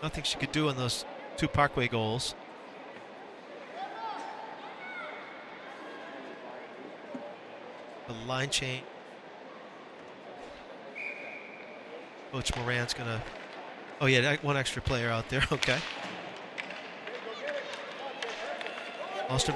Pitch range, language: 140-195 Hz, English